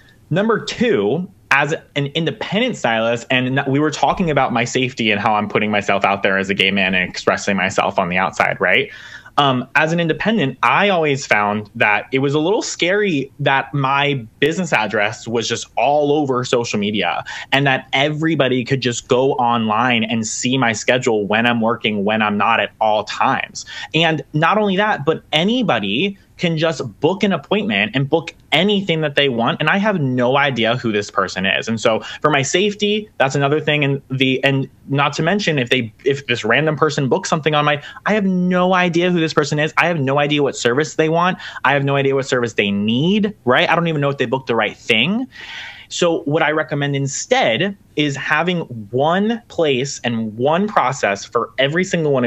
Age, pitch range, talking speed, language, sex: 20-39, 115-160 Hz, 200 wpm, English, male